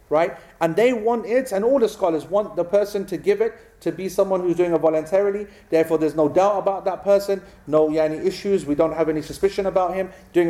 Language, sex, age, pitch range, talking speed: English, male, 40-59, 155-180 Hz, 235 wpm